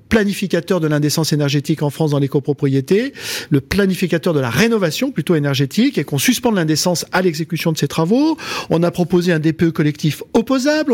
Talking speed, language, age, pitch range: 175 wpm, French, 50-69, 160-215 Hz